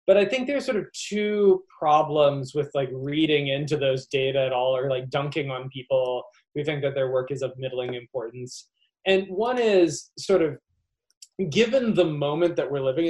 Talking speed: 190 wpm